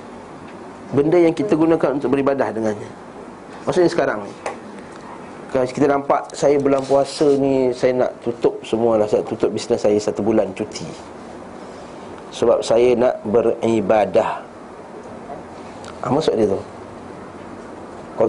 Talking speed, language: 120 wpm, Malay